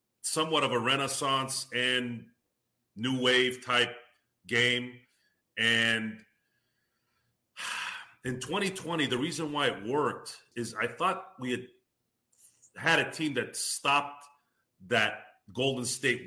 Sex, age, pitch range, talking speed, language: male, 40-59, 110-130 Hz, 110 wpm, English